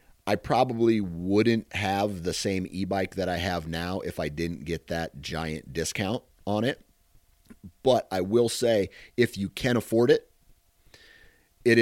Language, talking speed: English, 150 wpm